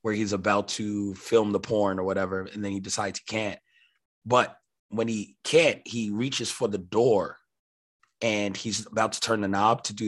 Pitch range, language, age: 95-110 Hz, English, 20-39